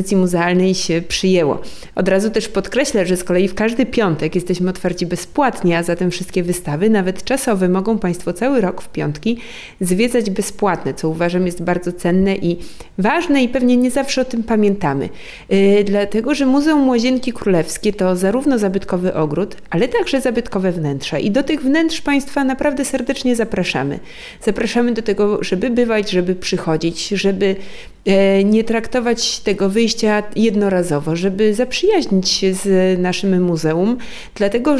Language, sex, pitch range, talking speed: Polish, female, 180-230 Hz, 145 wpm